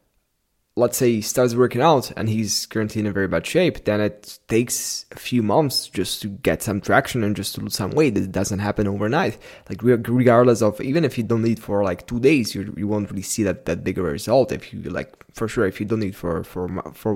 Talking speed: 240 wpm